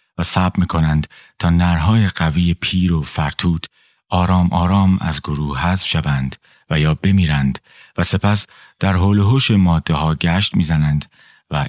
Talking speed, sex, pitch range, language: 140 wpm, male, 80-95 Hz, Persian